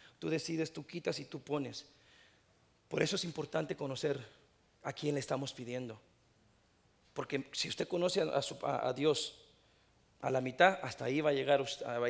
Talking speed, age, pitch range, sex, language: 170 wpm, 40-59, 140-210 Hz, male, English